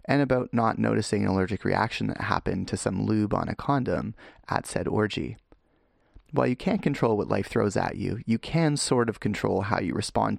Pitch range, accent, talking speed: 110-140 Hz, American, 200 wpm